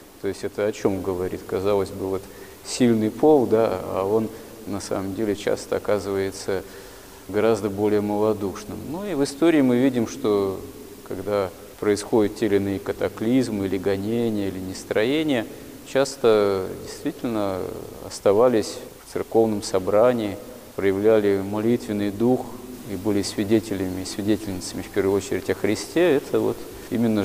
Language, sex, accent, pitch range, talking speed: Russian, male, native, 100-120 Hz, 130 wpm